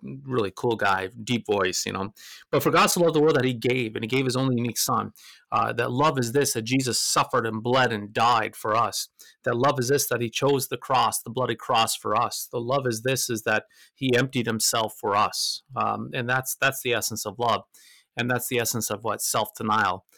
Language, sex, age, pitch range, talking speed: English, male, 30-49, 110-130 Hz, 235 wpm